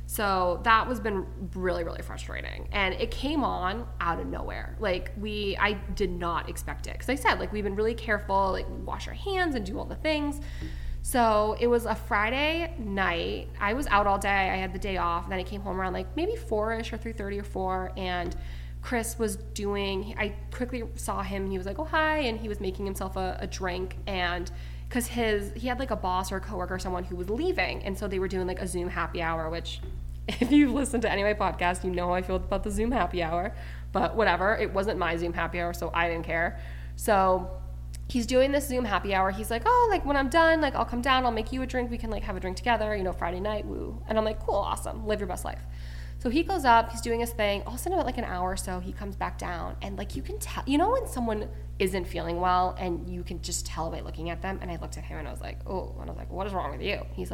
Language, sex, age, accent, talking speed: English, female, 20-39, American, 265 wpm